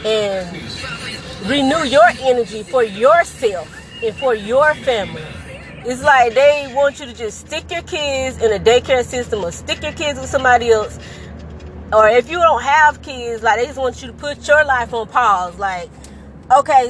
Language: English